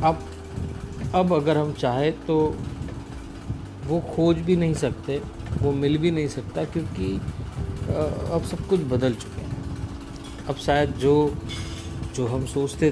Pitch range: 105-140 Hz